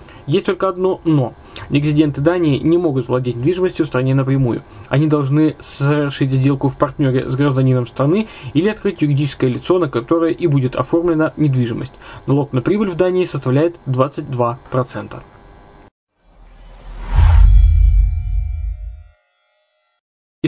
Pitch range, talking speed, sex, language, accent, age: 130-165 Hz, 115 wpm, male, Russian, native, 20-39